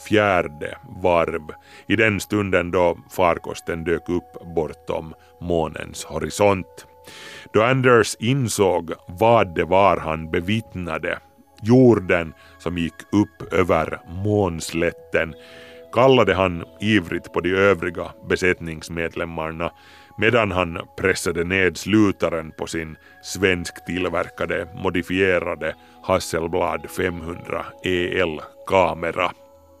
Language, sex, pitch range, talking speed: Swedish, male, 85-105 Hz, 95 wpm